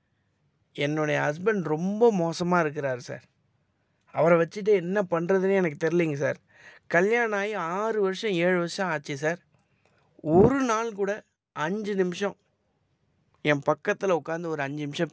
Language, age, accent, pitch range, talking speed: Tamil, 20-39, native, 155-195 Hz, 125 wpm